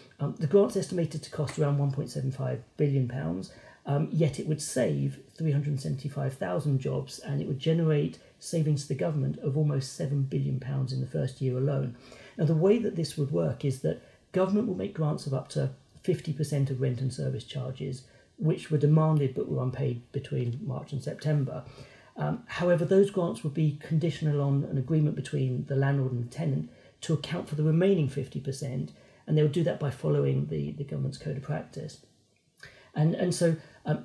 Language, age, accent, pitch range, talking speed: English, 40-59, British, 135-160 Hz, 185 wpm